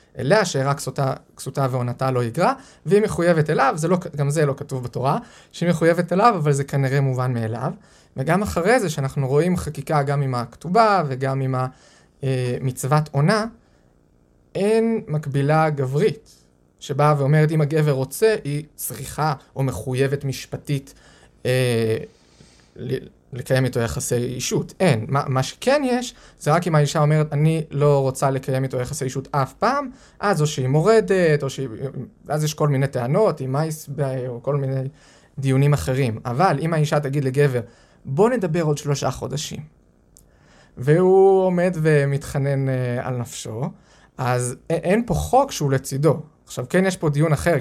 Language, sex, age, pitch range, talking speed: Hebrew, male, 20-39, 130-160 Hz, 155 wpm